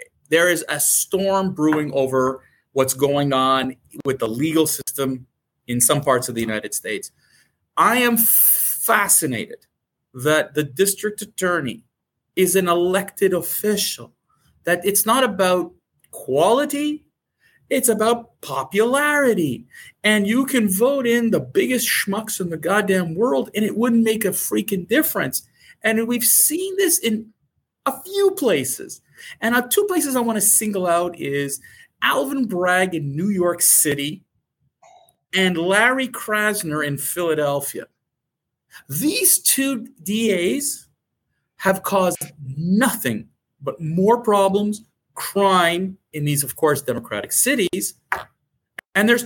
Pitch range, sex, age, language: 160-240 Hz, male, 40-59, English